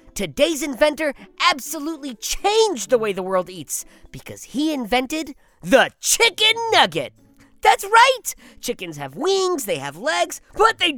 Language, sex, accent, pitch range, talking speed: English, female, American, 225-360 Hz, 135 wpm